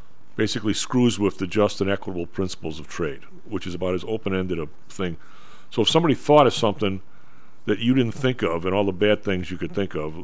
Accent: American